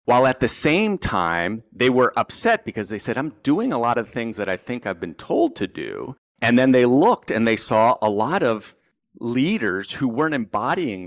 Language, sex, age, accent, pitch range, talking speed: English, male, 40-59, American, 95-125 Hz, 210 wpm